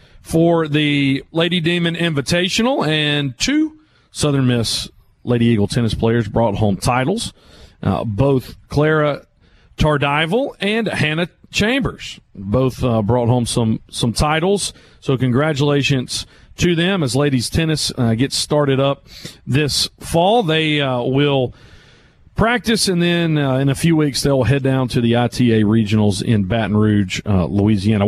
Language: English